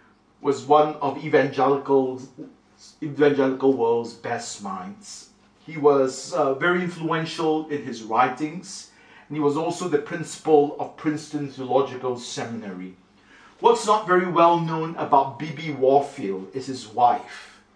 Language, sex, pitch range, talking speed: English, male, 140-180 Hz, 125 wpm